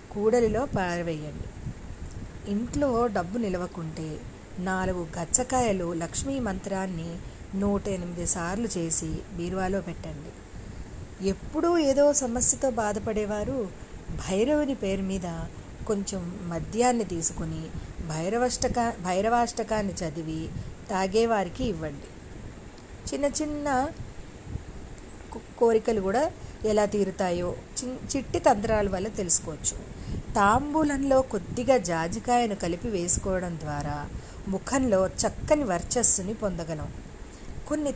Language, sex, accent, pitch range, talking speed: Telugu, female, native, 170-240 Hz, 80 wpm